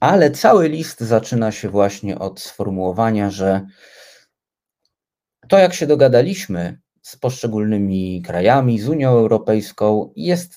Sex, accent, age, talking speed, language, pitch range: male, native, 30-49, 115 wpm, Polish, 95-125 Hz